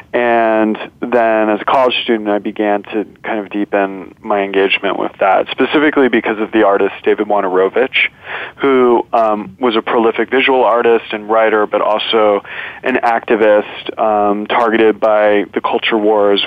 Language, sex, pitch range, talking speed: English, male, 100-115 Hz, 155 wpm